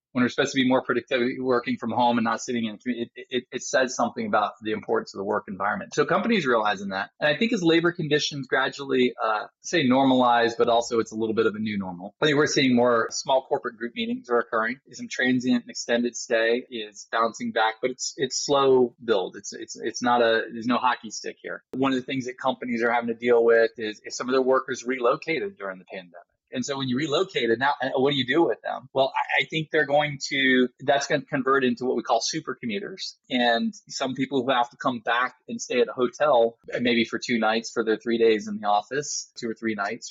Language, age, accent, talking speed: English, 20-39, American, 245 wpm